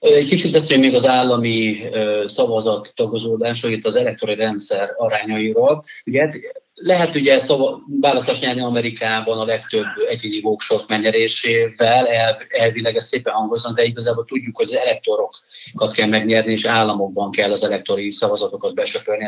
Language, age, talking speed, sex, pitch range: Hungarian, 30-49, 125 wpm, male, 110-145 Hz